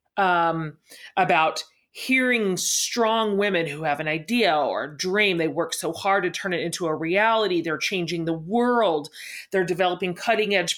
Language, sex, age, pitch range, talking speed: English, female, 30-49, 165-225 Hz, 160 wpm